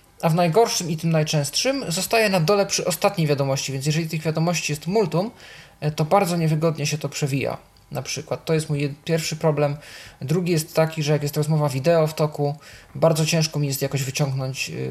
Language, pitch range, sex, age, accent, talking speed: Polish, 140-165 Hz, male, 20-39, native, 190 wpm